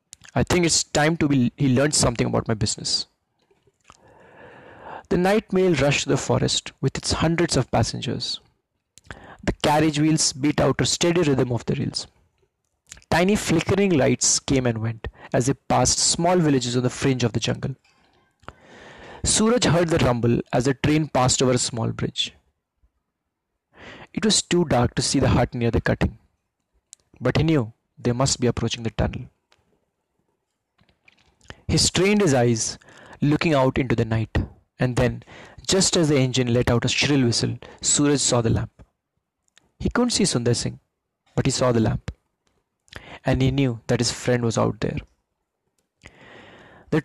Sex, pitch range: male, 120-155 Hz